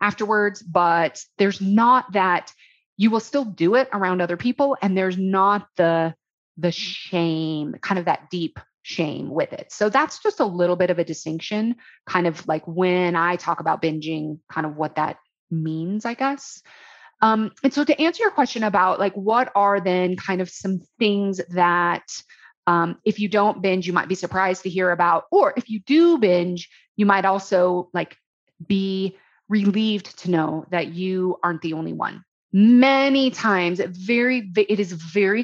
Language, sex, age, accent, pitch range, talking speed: English, female, 30-49, American, 180-235 Hz, 175 wpm